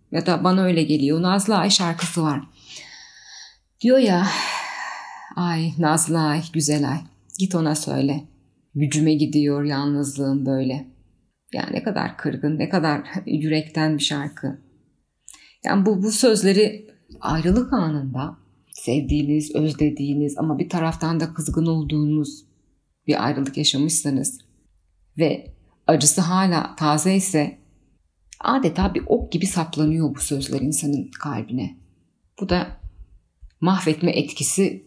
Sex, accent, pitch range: female, native, 140-185 Hz